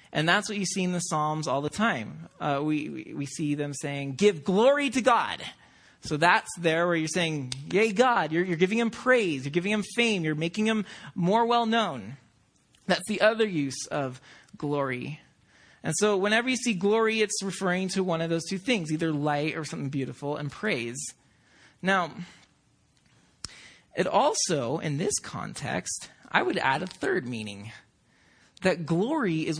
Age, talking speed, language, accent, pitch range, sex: 30-49, 175 wpm, English, American, 135-185 Hz, male